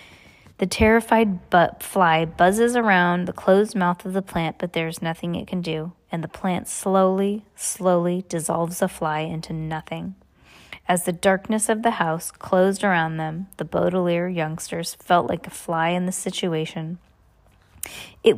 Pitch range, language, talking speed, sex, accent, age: 165-195 Hz, English, 155 wpm, female, American, 20-39